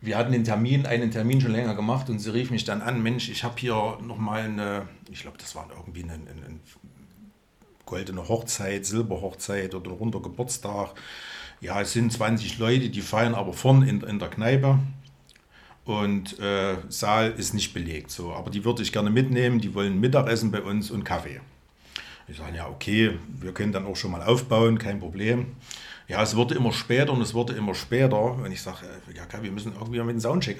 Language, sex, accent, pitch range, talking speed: German, male, German, 100-120 Hz, 200 wpm